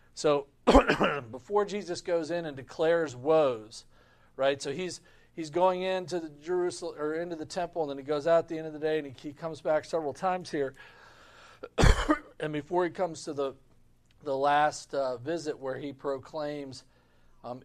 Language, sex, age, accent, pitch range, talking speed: English, male, 40-59, American, 130-160 Hz, 175 wpm